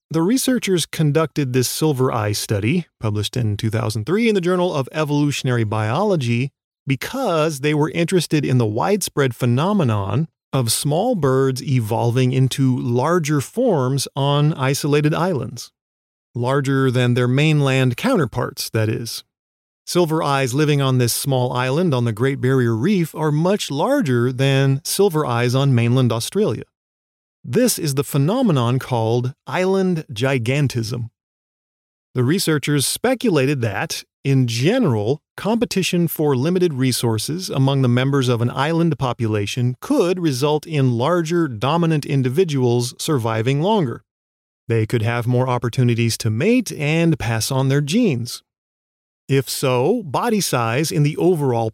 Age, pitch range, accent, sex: 30-49, 120-160 Hz, American, male